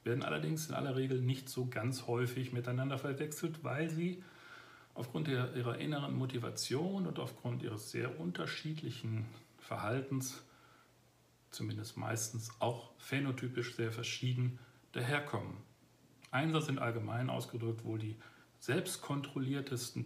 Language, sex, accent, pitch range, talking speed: German, male, German, 115-135 Hz, 110 wpm